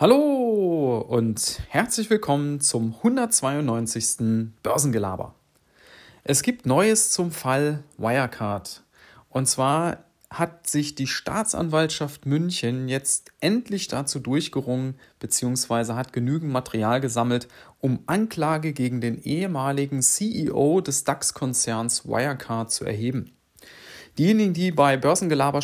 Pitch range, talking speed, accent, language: 125-155 Hz, 105 wpm, German, German